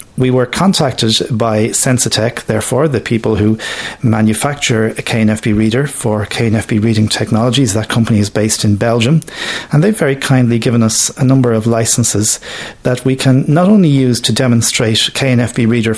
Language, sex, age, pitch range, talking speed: English, male, 40-59, 110-135 Hz, 160 wpm